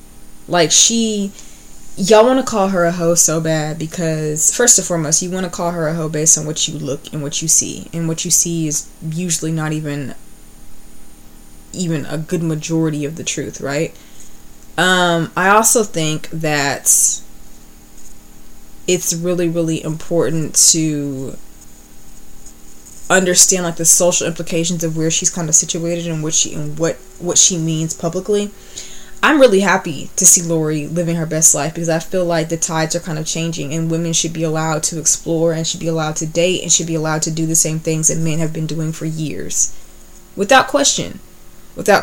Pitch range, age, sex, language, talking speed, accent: 155-180 Hz, 20-39, female, English, 185 wpm, American